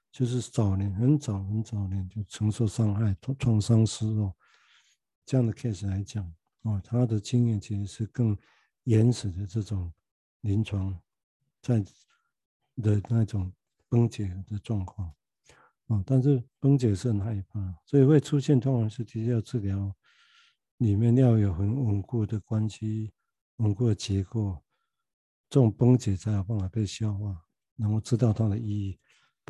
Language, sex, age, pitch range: Chinese, male, 50-69, 100-120 Hz